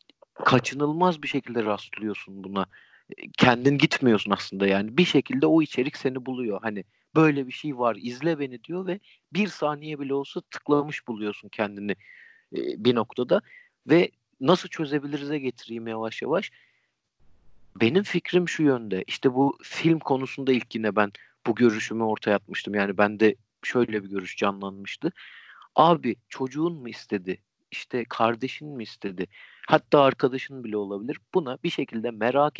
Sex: male